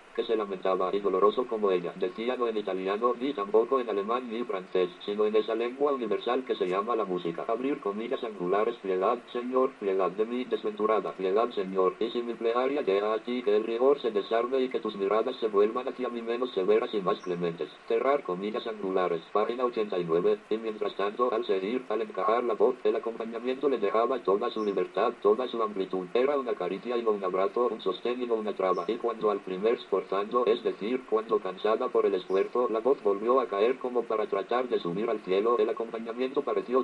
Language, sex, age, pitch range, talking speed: Spanish, male, 50-69, 105-145 Hz, 205 wpm